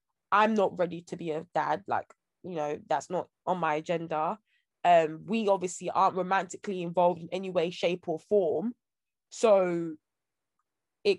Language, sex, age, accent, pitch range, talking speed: English, female, 20-39, British, 170-220 Hz, 155 wpm